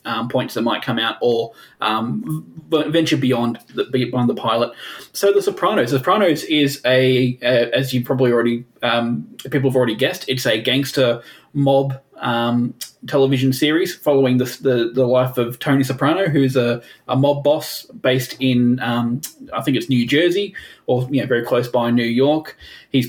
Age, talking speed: 20-39, 180 wpm